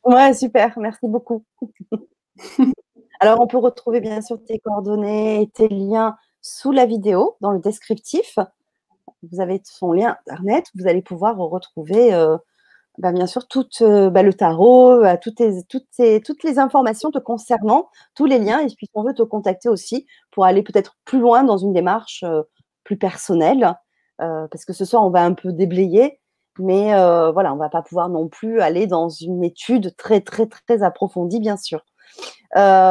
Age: 30-49